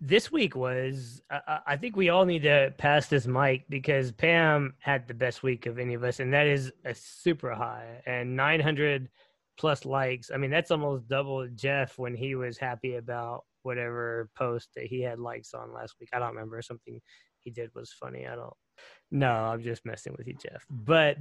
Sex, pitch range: male, 125-145 Hz